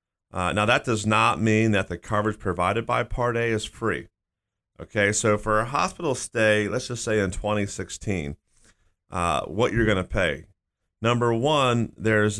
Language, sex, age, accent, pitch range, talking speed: English, male, 40-59, American, 95-120 Hz, 170 wpm